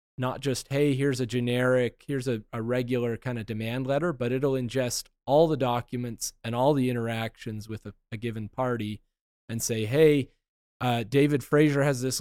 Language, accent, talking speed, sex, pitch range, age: English, American, 180 wpm, male, 115-140 Hz, 30-49